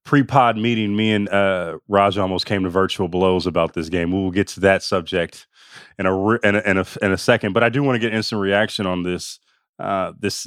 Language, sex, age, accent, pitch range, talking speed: English, male, 20-39, American, 100-125 Hz, 240 wpm